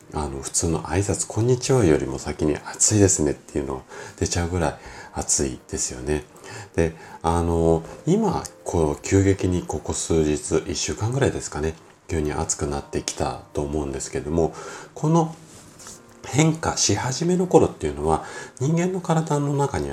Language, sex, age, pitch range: Japanese, male, 40-59, 80-125 Hz